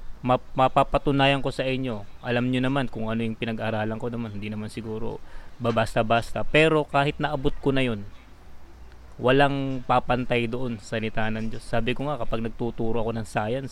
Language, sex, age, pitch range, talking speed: Filipino, male, 20-39, 110-130 Hz, 175 wpm